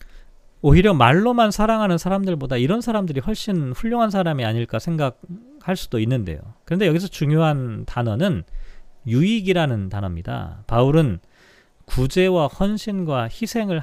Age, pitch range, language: 40-59, 125-185 Hz, Korean